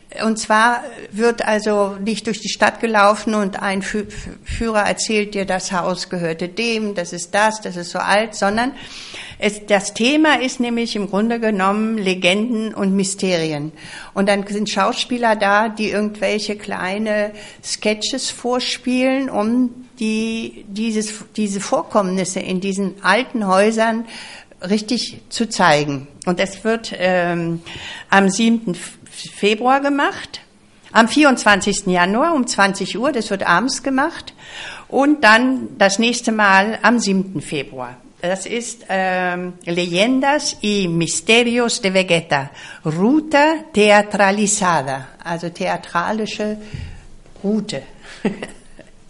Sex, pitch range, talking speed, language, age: female, 190-230 Hz, 120 wpm, Spanish, 60-79